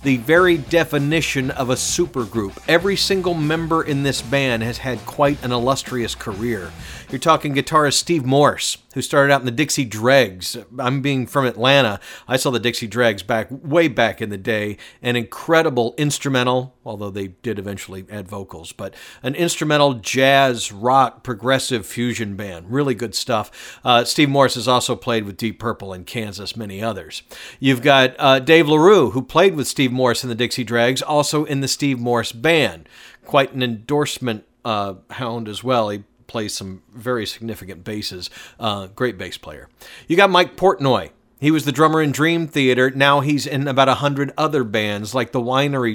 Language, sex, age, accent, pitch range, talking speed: English, male, 50-69, American, 115-145 Hz, 180 wpm